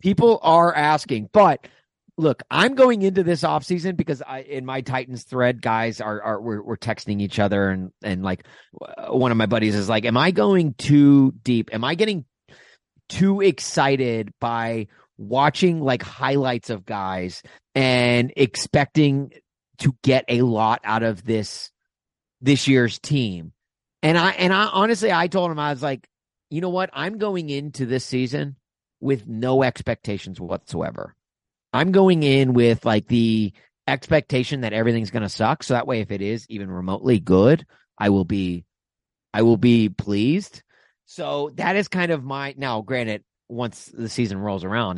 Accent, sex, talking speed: American, male, 170 wpm